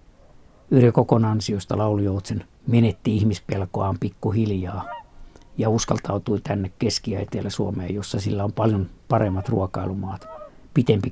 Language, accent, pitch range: Finnish, native, 95-115 Hz